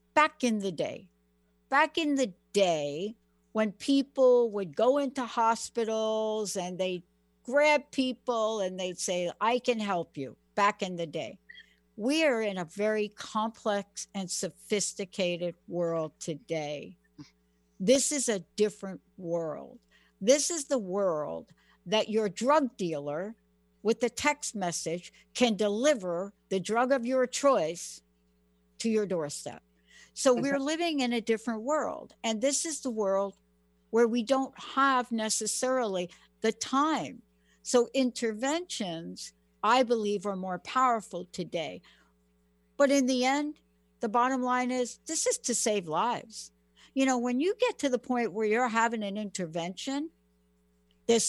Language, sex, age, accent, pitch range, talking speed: English, female, 60-79, American, 175-255 Hz, 140 wpm